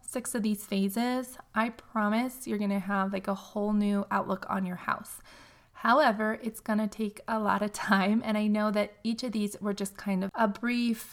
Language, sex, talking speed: English, female, 215 wpm